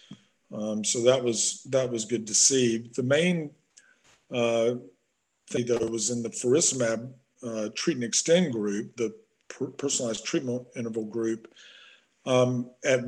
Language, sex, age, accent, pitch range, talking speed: English, male, 50-69, American, 115-130 Hz, 140 wpm